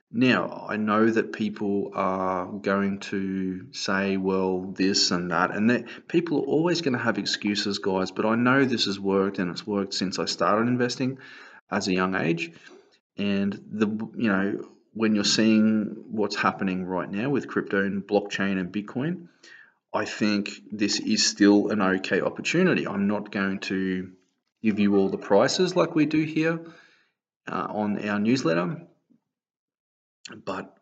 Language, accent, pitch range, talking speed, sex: English, Australian, 100-110 Hz, 160 wpm, male